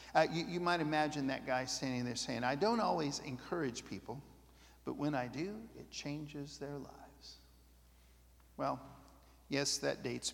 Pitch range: 130-155 Hz